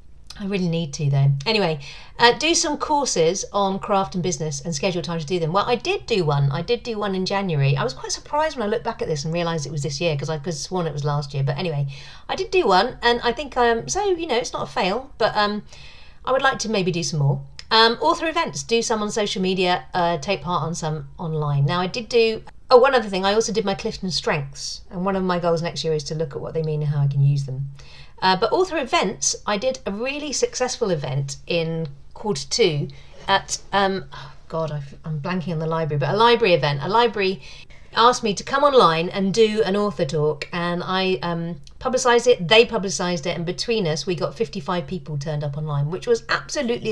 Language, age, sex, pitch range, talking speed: English, 50-69, female, 155-220 Hz, 240 wpm